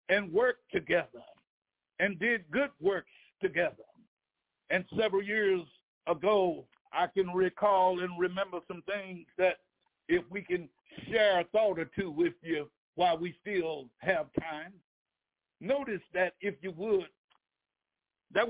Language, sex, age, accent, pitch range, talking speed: English, male, 60-79, American, 180-230 Hz, 135 wpm